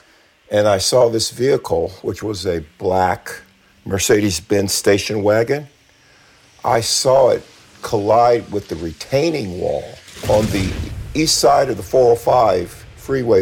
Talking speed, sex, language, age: 125 wpm, male, English, 50-69